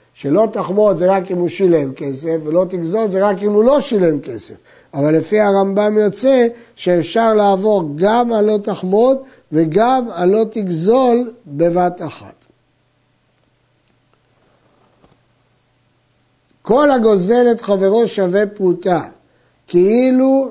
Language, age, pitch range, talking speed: Hebrew, 60-79, 165-225 Hz, 110 wpm